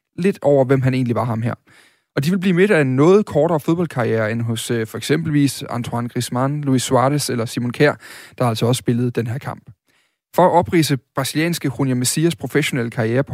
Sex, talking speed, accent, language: male, 205 wpm, native, Danish